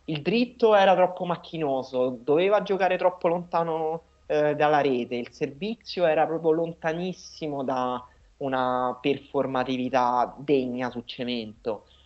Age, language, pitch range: 30-49, Italian, 125-175 Hz